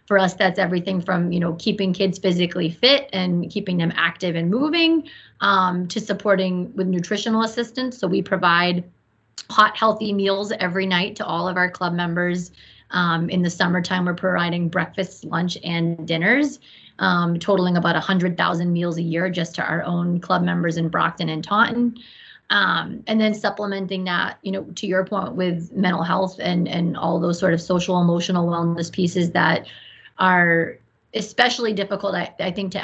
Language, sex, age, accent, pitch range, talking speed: English, female, 30-49, American, 175-200 Hz, 175 wpm